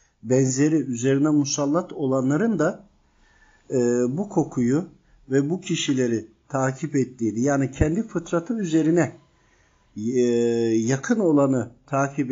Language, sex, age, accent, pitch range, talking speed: Turkish, male, 50-69, native, 125-170 Hz, 100 wpm